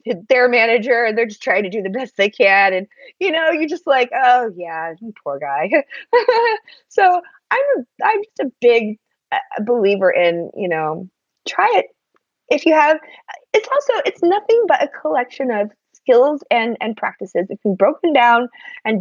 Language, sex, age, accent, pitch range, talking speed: English, female, 30-49, American, 210-325 Hz, 180 wpm